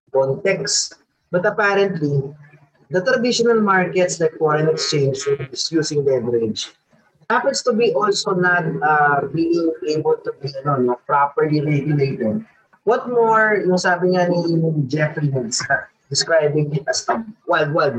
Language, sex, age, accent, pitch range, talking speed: Filipino, male, 20-39, native, 155-215 Hz, 140 wpm